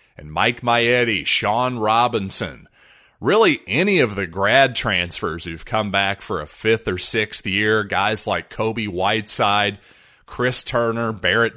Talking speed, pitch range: 140 wpm, 100-125 Hz